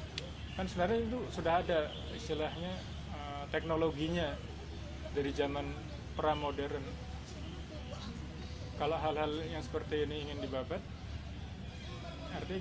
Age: 20-39